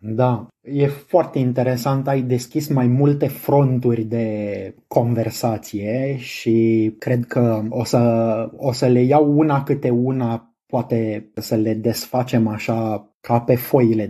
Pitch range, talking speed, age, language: 115-135 Hz, 130 wpm, 20-39, Romanian